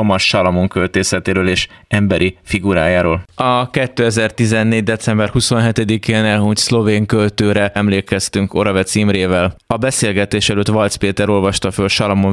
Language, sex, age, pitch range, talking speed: Hungarian, male, 20-39, 100-110 Hz, 110 wpm